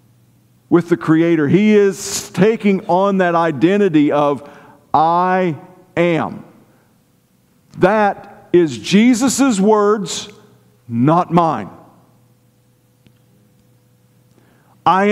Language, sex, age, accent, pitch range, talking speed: English, male, 50-69, American, 145-205 Hz, 75 wpm